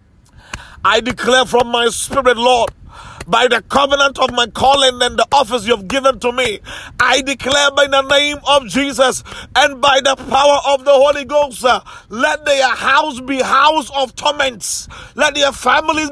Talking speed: 165 wpm